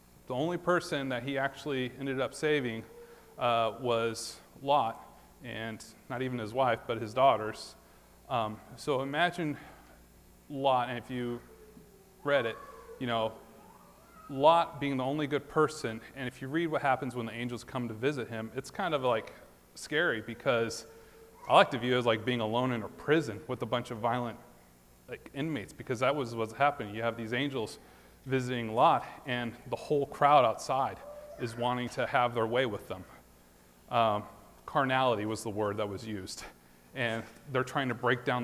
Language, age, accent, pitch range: English, 30-49, American, 110-130 Hz